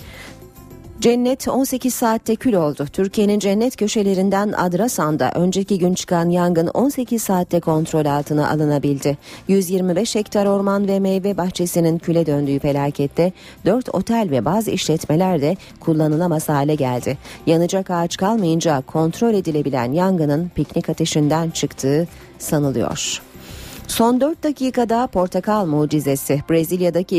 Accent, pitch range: native, 150-200 Hz